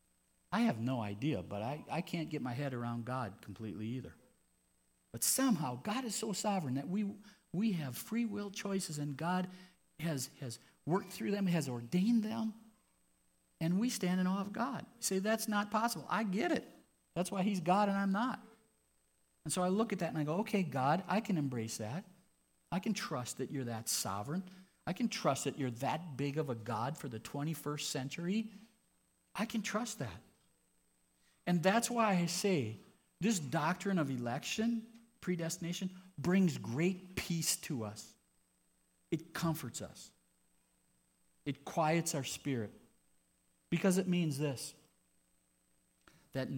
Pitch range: 115-185 Hz